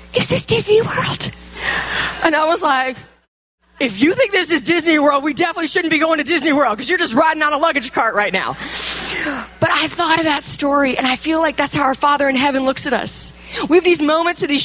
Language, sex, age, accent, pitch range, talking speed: English, female, 40-59, American, 265-355 Hz, 240 wpm